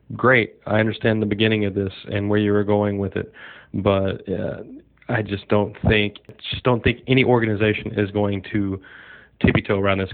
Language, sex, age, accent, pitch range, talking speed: English, male, 30-49, American, 100-110 Hz, 190 wpm